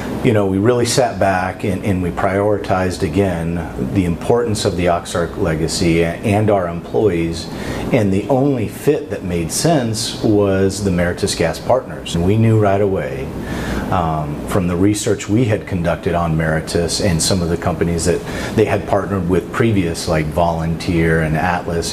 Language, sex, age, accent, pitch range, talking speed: English, male, 40-59, American, 85-105 Hz, 165 wpm